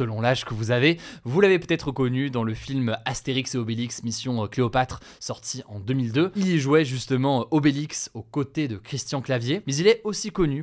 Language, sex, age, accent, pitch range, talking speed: French, male, 20-39, French, 120-155 Hz, 200 wpm